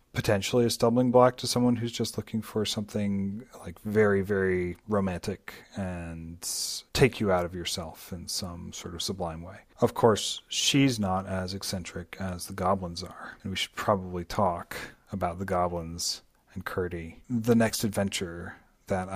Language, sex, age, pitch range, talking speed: English, male, 40-59, 95-115 Hz, 160 wpm